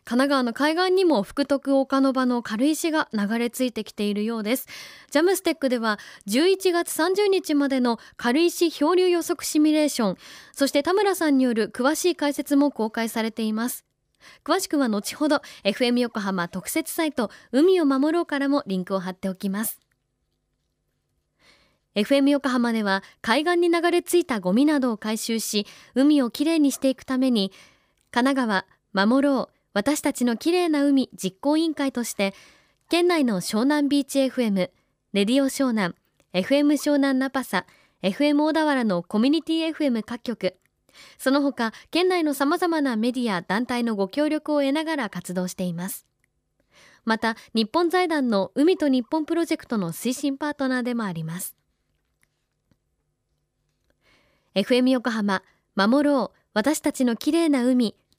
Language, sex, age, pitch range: Japanese, female, 20-39, 225-300 Hz